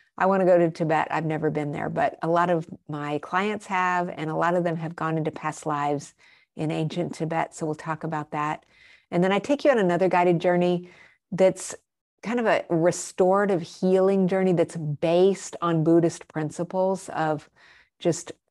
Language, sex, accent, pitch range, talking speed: English, female, American, 155-180 Hz, 185 wpm